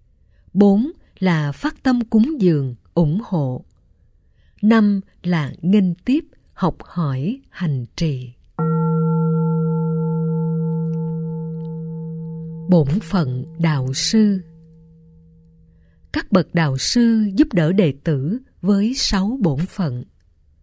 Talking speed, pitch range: 95 wpm, 145-205 Hz